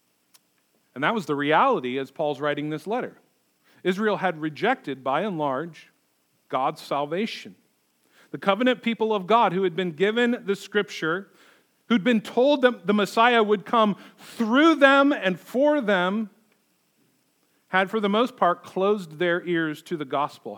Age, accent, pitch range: 40-59, American, 150-215 Hz